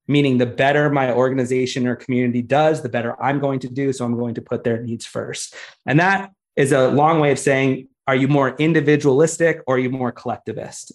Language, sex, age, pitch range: English, male, 30-49, 130-155 Hz